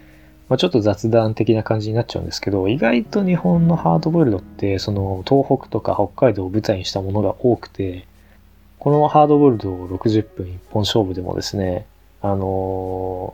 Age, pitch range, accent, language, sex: 20-39, 95-120 Hz, native, Japanese, male